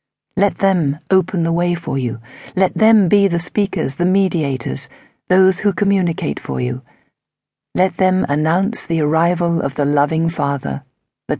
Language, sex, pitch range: English, female, 150-195 Hz